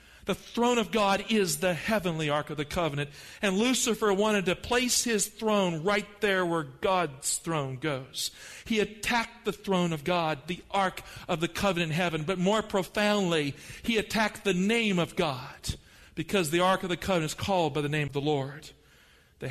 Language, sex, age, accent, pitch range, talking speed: English, male, 50-69, American, 150-200 Hz, 190 wpm